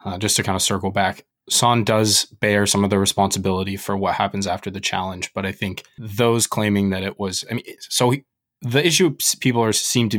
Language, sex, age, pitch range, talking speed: English, male, 20-39, 95-110 Hz, 225 wpm